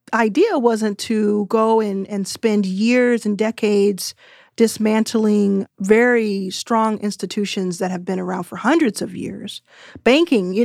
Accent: American